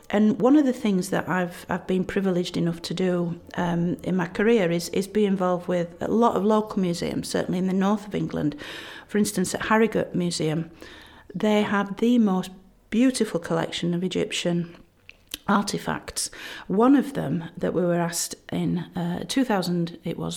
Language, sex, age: English, female, 50-69